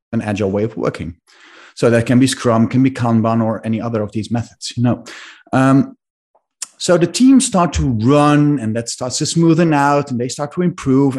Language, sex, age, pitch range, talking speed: English, male, 30-49, 110-145 Hz, 210 wpm